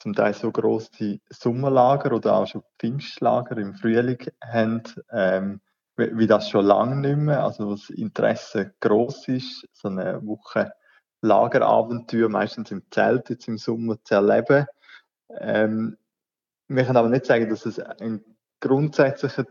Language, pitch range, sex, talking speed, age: German, 105-120 Hz, male, 145 wpm, 20-39